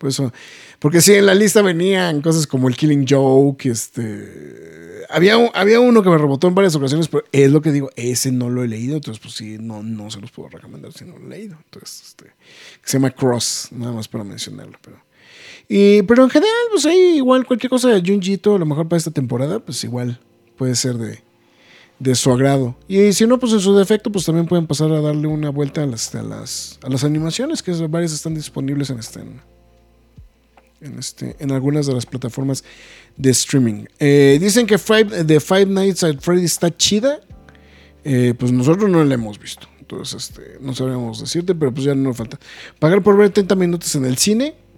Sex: male